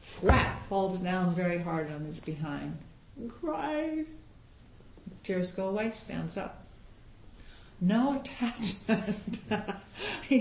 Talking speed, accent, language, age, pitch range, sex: 100 wpm, American, English, 60-79, 140-220 Hz, female